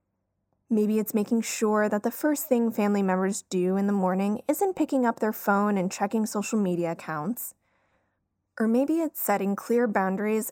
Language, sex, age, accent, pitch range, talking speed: English, female, 20-39, American, 180-235 Hz, 170 wpm